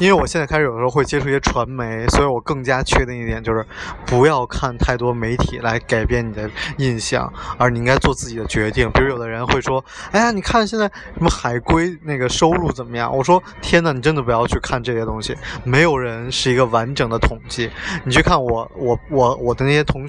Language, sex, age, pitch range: Chinese, male, 20-39, 115-145 Hz